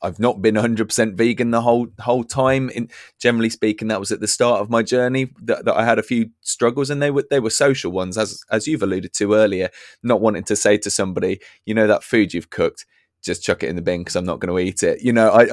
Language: English